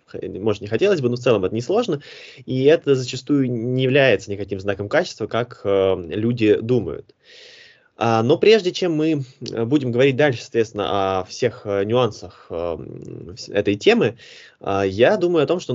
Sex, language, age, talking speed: male, Russian, 20-39, 150 wpm